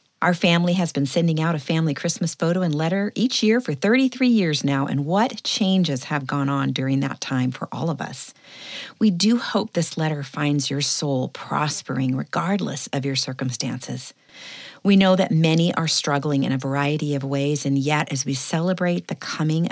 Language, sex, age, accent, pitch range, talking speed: English, female, 40-59, American, 140-190 Hz, 190 wpm